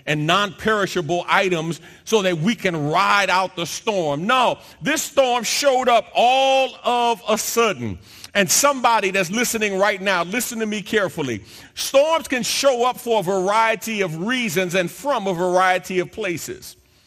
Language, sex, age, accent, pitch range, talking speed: English, male, 50-69, American, 170-235 Hz, 160 wpm